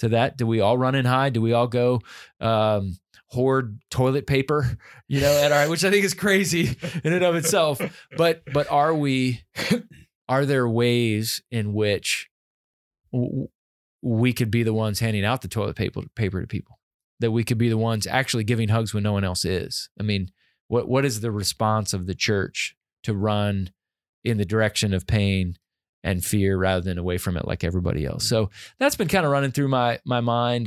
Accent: American